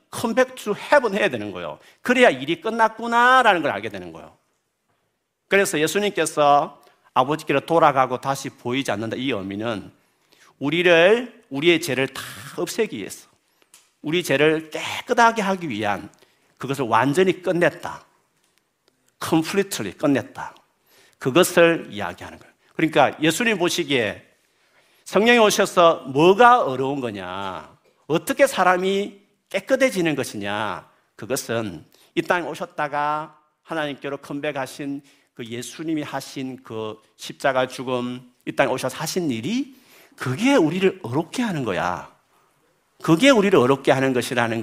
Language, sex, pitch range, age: Korean, male, 135-200 Hz, 50-69